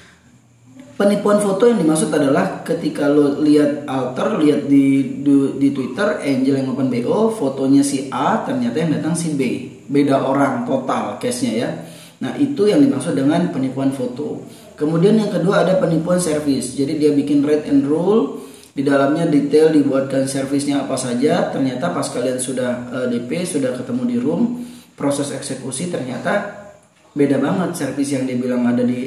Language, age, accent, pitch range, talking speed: Indonesian, 20-39, native, 135-195 Hz, 160 wpm